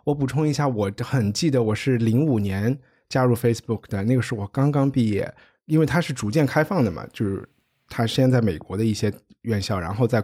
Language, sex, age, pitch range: Chinese, male, 20-39, 110-140 Hz